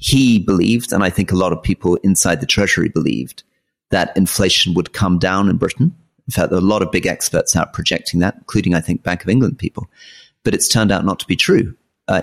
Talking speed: 235 wpm